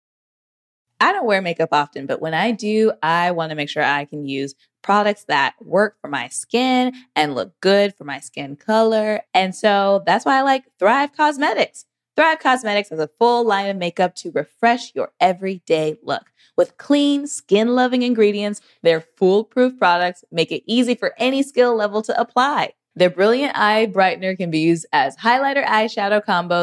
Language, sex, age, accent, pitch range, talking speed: English, female, 20-39, American, 170-245 Hz, 175 wpm